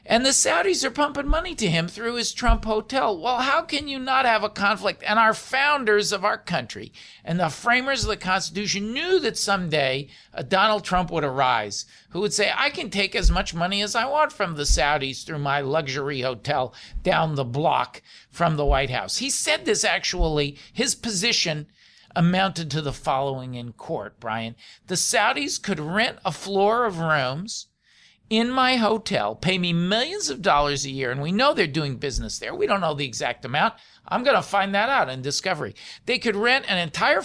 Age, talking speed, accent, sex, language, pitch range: 50-69, 200 wpm, American, male, English, 145-220 Hz